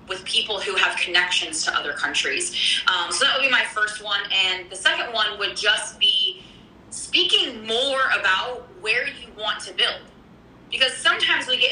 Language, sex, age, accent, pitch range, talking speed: English, female, 20-39, American, 205-280 Hz, 180 wpm